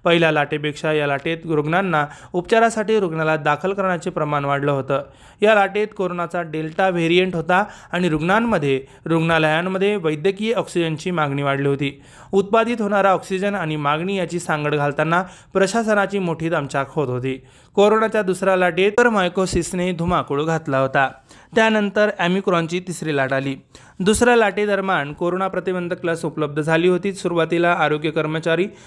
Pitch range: 150-190 Hz